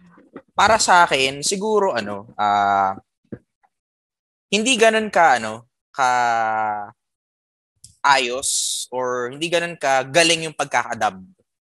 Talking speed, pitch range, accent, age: 100 wpm, 110-150 Hz, native, 20-39